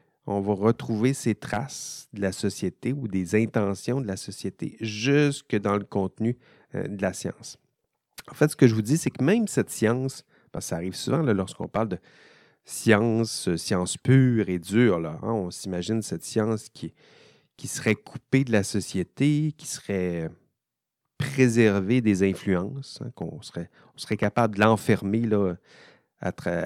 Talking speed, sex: 165 wpm, male